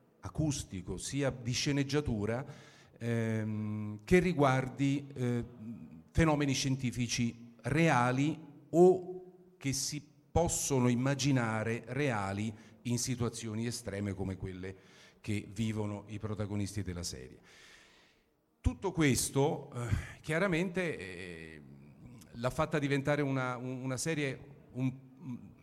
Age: 40-59